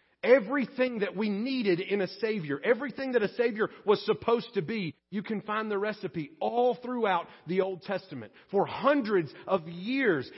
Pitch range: 175-240 Hz